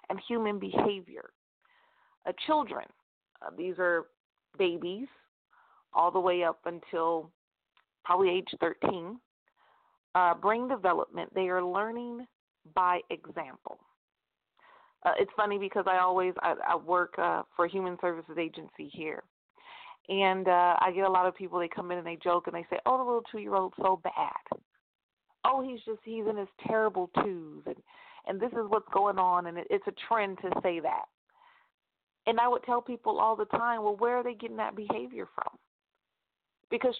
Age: 40-59